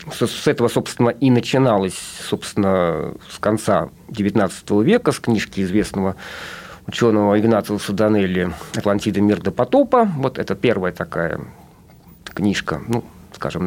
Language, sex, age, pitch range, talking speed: Russian, male, 50-69, 105-160 Hz, 125 wpm